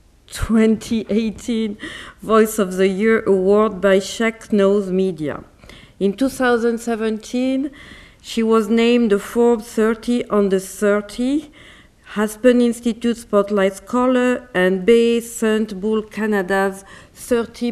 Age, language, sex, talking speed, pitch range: 40-59, English, female, 105 wpm, 200-235 Hz